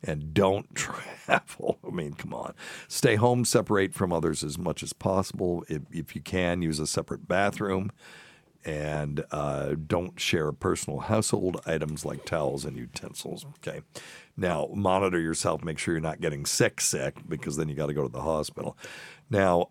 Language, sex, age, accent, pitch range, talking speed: English, male, 60-79, American, 75-95 Hz, 175 wpm